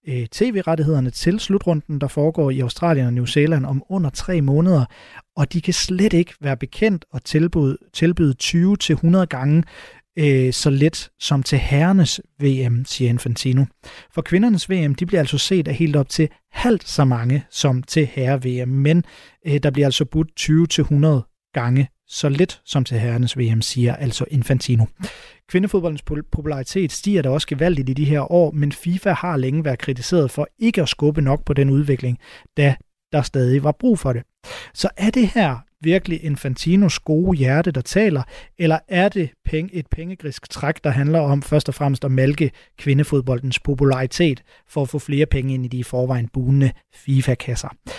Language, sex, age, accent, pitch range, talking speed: Danish, male, 30-49, native, 135-170 Hz, 170 wpm